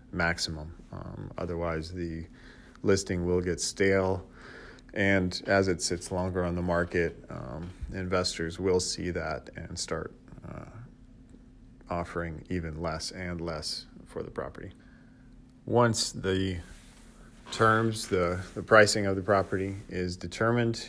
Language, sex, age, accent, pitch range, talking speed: English, male, 40-59, American, 85-100 Hz, 125 wpm